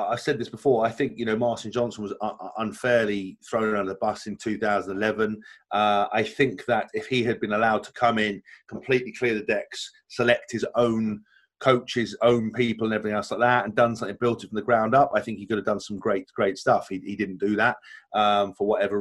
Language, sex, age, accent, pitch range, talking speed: English, male, 30-49, British, 105-130 Hz, 225 wpm